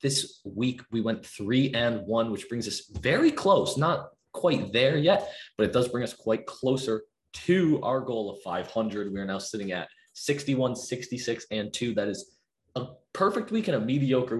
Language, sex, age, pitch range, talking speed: English, male, 20-39, 105-140 Hz, 190 wpm